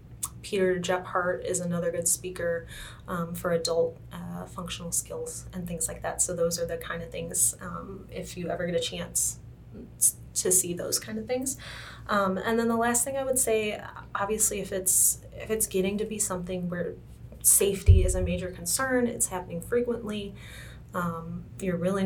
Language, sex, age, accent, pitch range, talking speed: English, female, 20-39, American, 170-215 Hz, 175 wpm